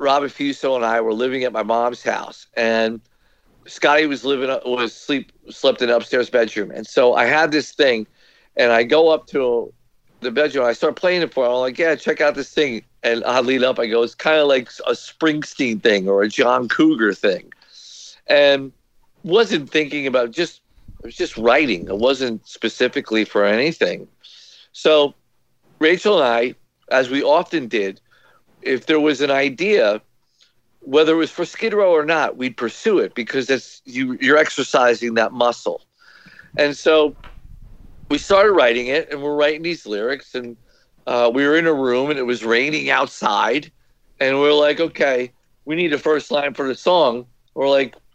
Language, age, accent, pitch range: English, 50-69, American, 120-155 Hz